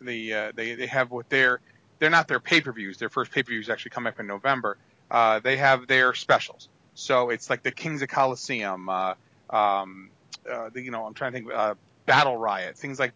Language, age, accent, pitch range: English, 40-59, American, 120-150 Hz